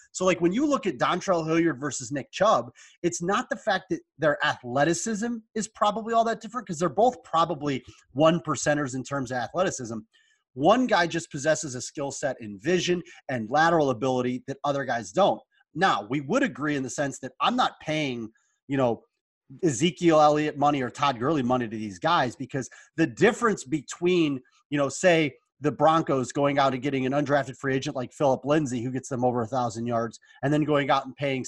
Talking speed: 200 wpm